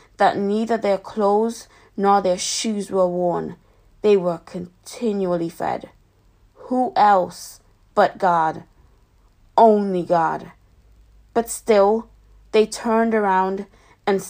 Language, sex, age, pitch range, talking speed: English, female, 20-39, 165-205 Hz, 105 wpm